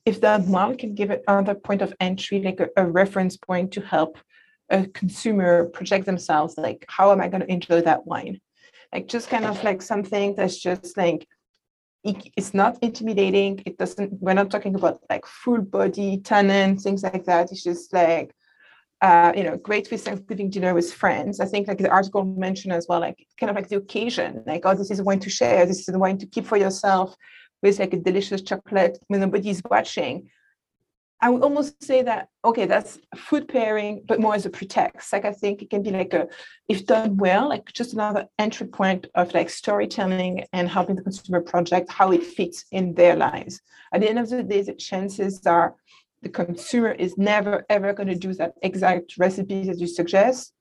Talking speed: 205 wpm